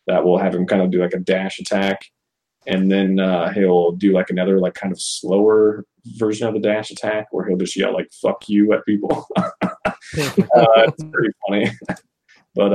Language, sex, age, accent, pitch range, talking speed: English, male, 20-39, American, 90-105 Hz, 195 wpm